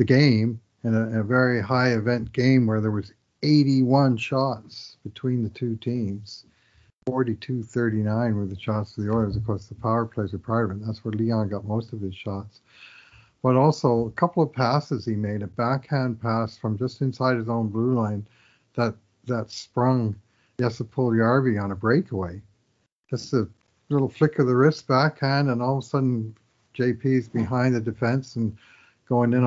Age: 50-69